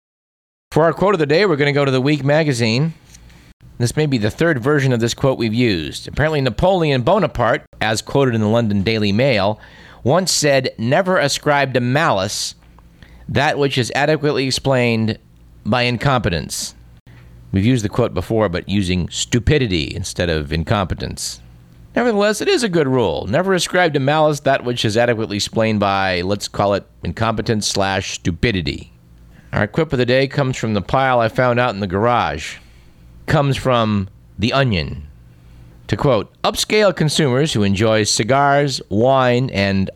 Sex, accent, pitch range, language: male, American, 95-140 Hz, English